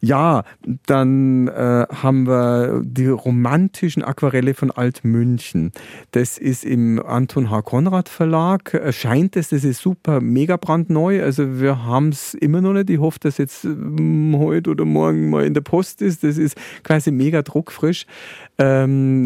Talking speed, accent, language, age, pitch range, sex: 160 wpm, German, German, 40-59, 115-145 Hz, male